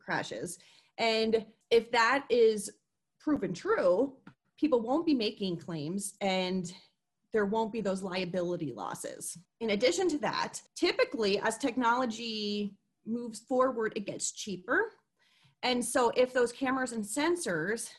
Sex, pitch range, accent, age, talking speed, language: female, 190-245 Hz, American, 30-49, 125 wpm, English